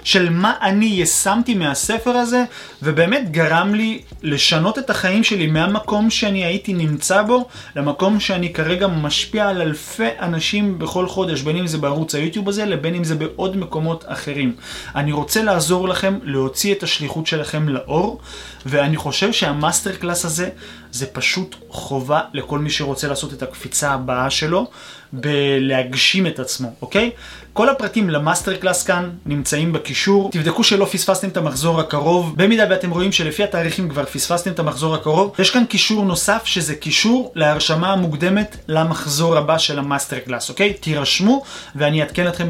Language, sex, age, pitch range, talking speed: Hebrew, male, 30-49, 145-195 Hz, 155 wpm